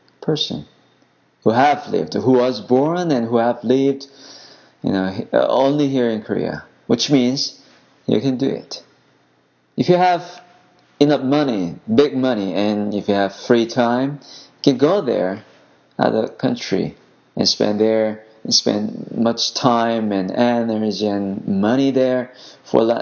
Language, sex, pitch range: Korean, male, 115-140 Hz